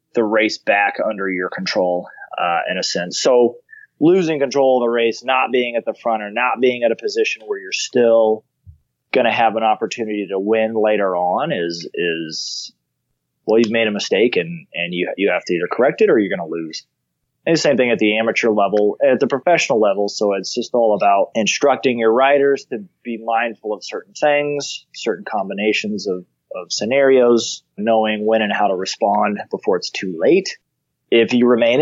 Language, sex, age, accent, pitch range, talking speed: English, male, 30-49, American, 100-130 Hz, 195 wpm